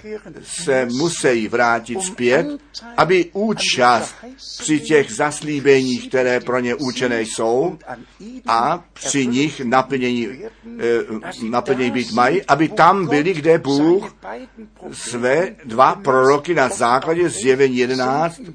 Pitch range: 130-180 Hz